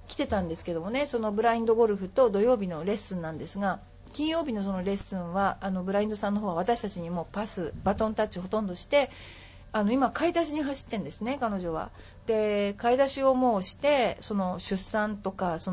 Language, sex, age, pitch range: Japanese, female, 40-59, 185-245 Hz